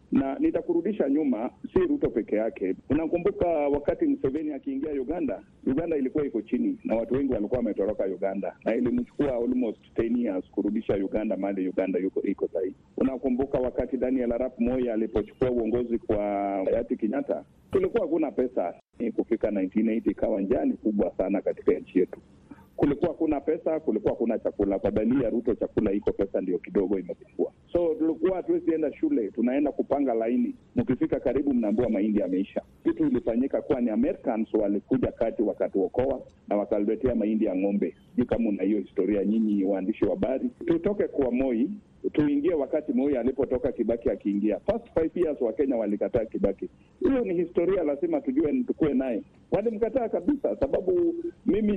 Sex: male